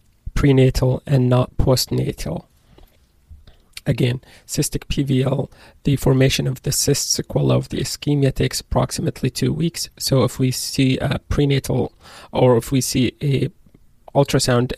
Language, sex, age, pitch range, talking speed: English, male, 20-39, 125-145 Hz, 130 wpm